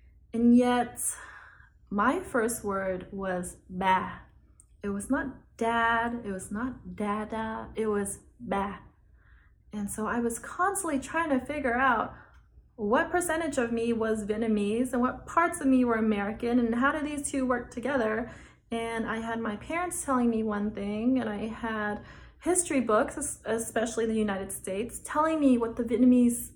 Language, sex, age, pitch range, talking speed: English, female, 20-39, 215-255 Hz, 160 wpm